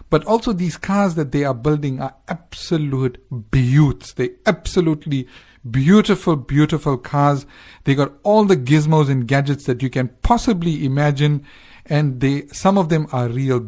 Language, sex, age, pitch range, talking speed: English, male, 50-69, 125-155 Hz, 155 wpm